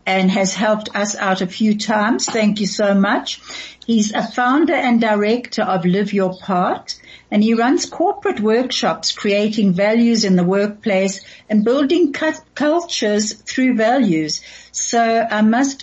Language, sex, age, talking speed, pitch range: English, female, 60-79, 150 wpm, 185-235 Hz